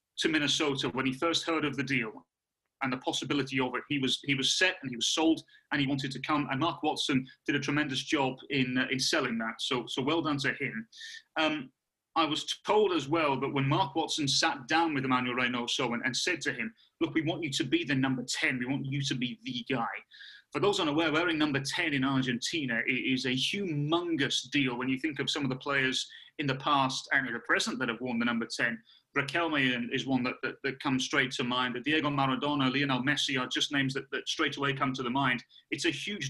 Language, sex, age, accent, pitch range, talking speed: English, male, 30-49, British, 130-170 Hz, 240 wpm